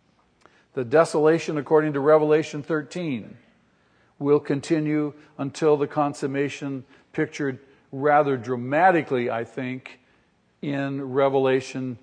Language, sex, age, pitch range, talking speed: English, male, 50-69, 130-160 Hz, 90 wpm